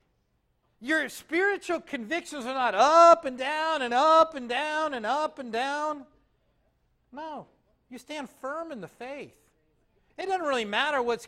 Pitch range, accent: 155-230 Hz, American